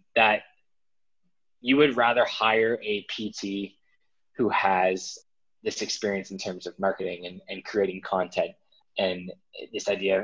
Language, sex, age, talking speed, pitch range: English, male, 20-39, 130 wpm, 95-115 Hz